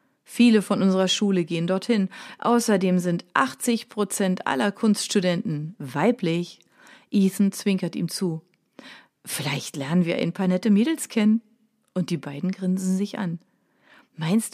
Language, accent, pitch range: German, German, 175-225 Hz